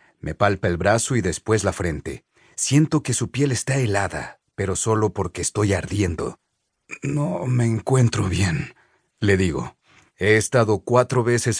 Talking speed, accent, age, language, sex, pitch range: 150 wpm, Mexican, 40-59, Spanish, male, 100-125 Hz